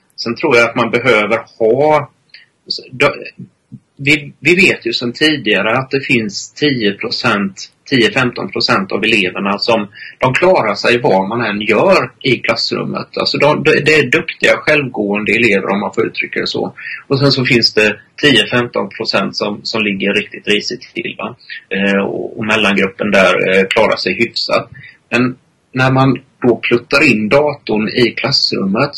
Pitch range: 105-130 Hz